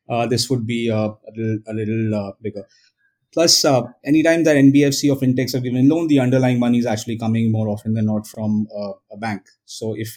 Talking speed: 220 wpm